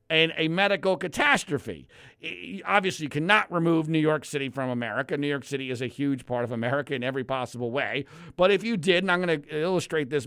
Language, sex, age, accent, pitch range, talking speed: English, male, 50-69, American, 150-230 Hz, 215 wpm